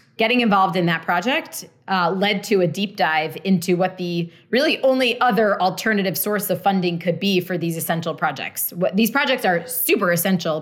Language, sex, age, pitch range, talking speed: English, female, 20-39, 170-200 Hz, 185 wpm